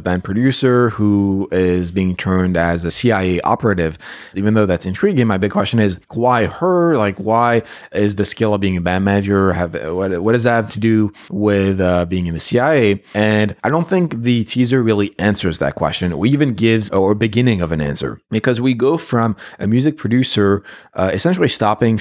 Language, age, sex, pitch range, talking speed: English, 30-49, male, 90-115 Hz, 195 wpm